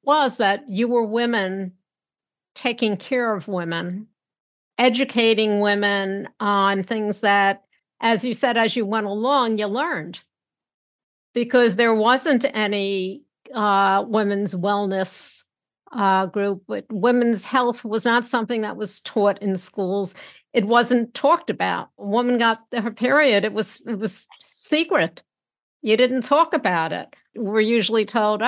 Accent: American